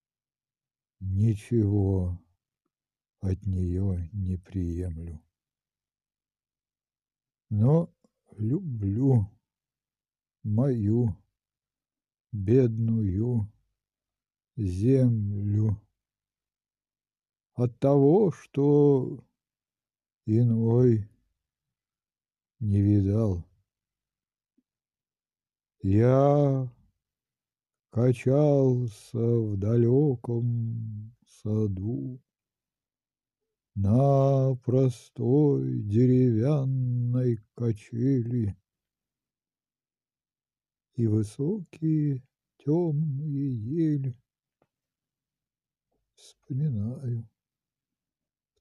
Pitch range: 105-135 Hz